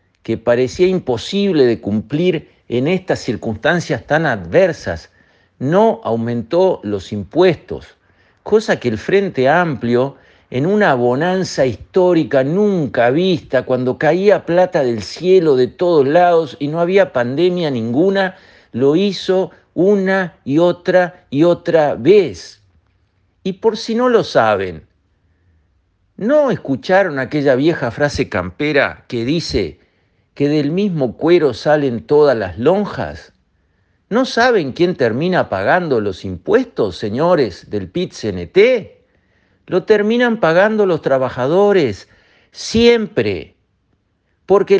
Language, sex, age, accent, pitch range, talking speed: Spanish, male, 50-69, Argentinian, 125-200 Hz, 115 wpm